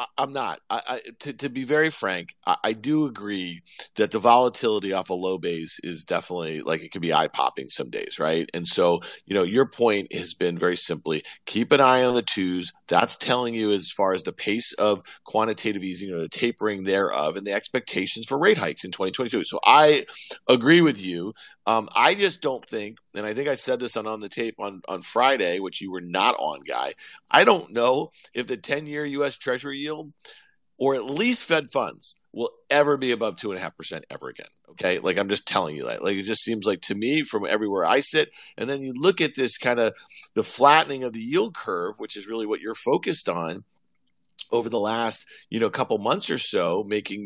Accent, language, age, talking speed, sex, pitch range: American, English, 40-59, 225 wpm, male, 100-140 Hz